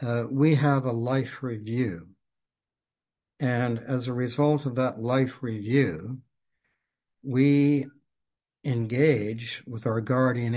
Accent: American